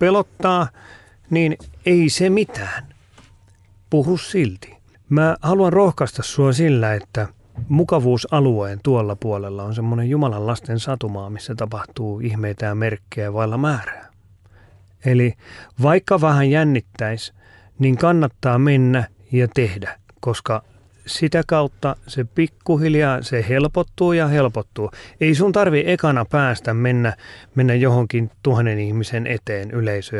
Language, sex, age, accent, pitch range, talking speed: Finnish, male, 30-49, native, 105-155 Hz, 115 wpm